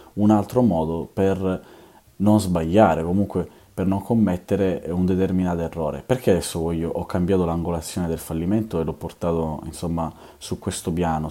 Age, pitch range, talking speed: 20-39, 80-100 Hz, 145 wpm